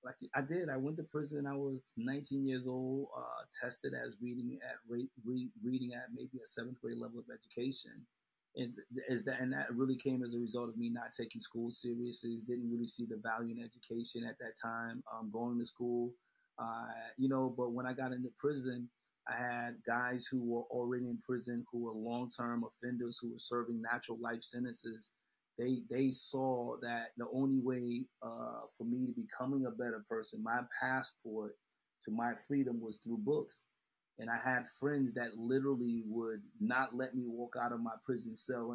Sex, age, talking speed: male, 30-49, 195 wpm